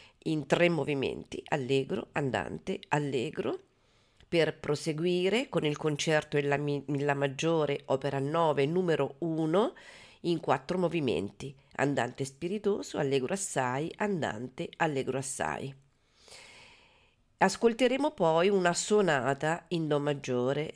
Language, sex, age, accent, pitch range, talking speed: Italian, female, 40-59, native, 135-180 Hz, 105 wpm